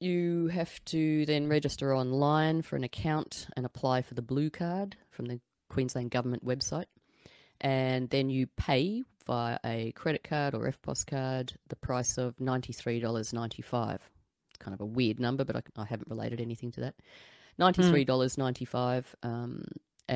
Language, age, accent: English, 30-49, Australian